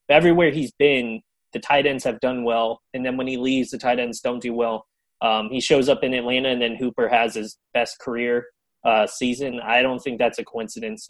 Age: 20-39